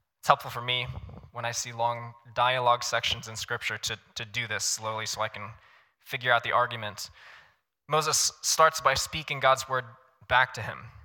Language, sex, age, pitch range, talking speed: English, male, 10-29, 110-135 Hz, 175 wpm